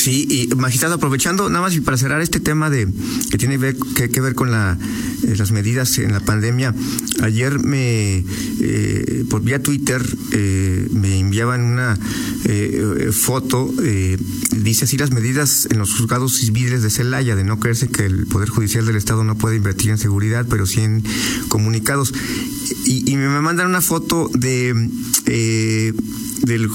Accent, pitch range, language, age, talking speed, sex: Mexican, 110-130 Hz, Spanish, 50-69, 175 wpm, male